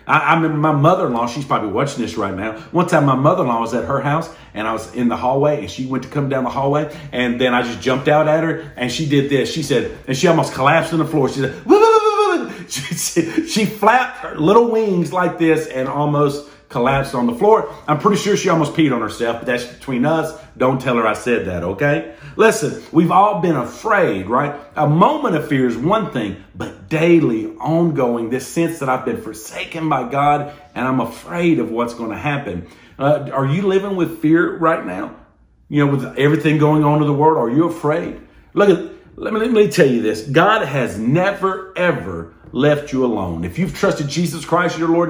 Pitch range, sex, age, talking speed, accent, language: 130-170 Hz, male, 40-59, 225 wpm, American, English